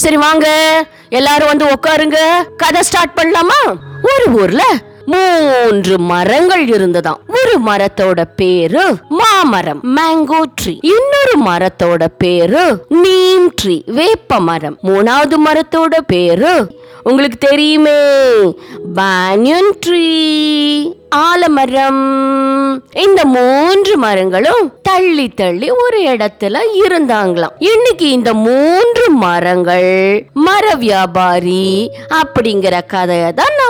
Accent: native